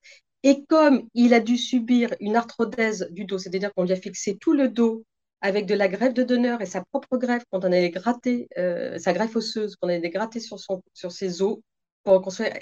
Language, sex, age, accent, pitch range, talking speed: French, female, 40-59, French, 185-245 Hz, 225 wpm